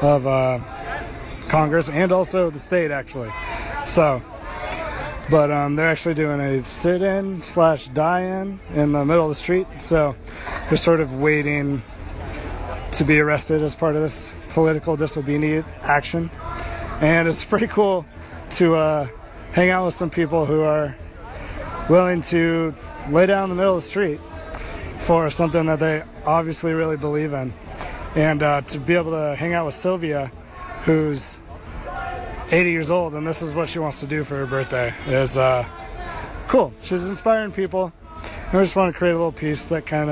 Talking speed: 170 wpm